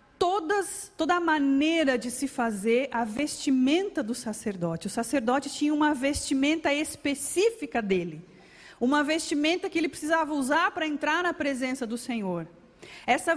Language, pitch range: Portuguese, 245-315 Hz